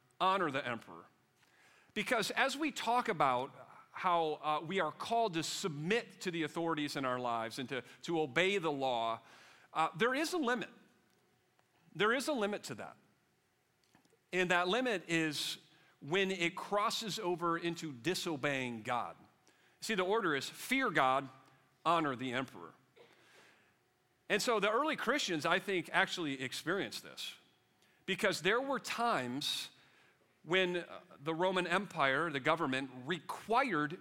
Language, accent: English, American